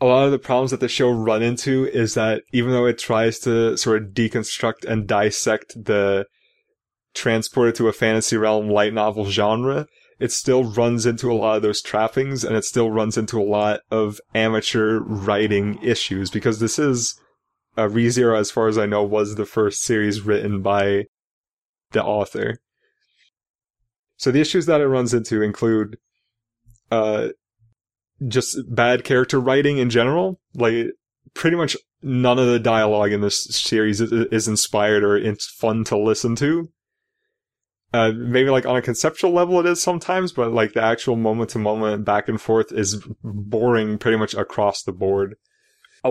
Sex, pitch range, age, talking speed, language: male, 110-130 Hz, 20-39, 170 wpm, English